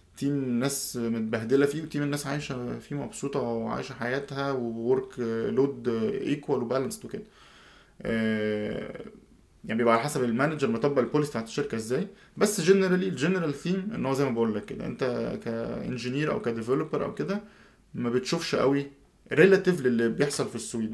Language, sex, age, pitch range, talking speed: Arabic, male, 20-39, 115-155 Hz, 145 wpm